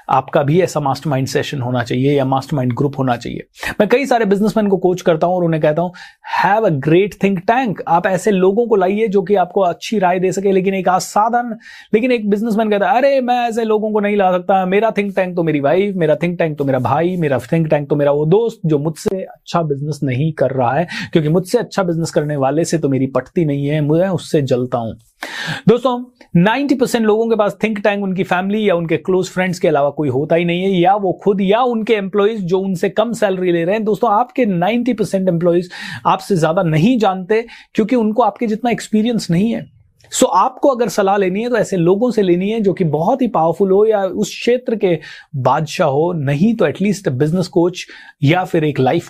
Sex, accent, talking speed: male, native, 220 wpm